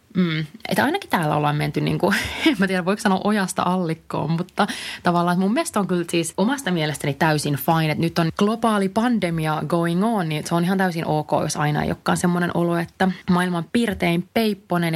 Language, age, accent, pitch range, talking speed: Finnish, 30-49, native, 170-225 Hz, 195 wpm